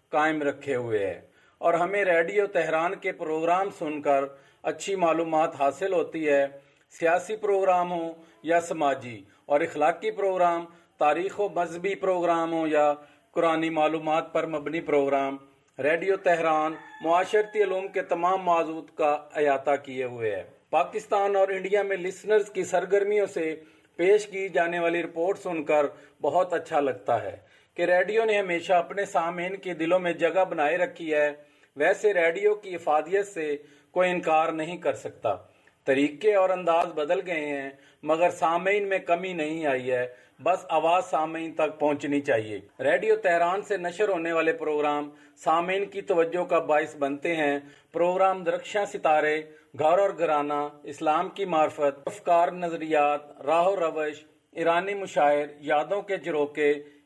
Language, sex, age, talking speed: Urdu, male, 40-59, 145 wpm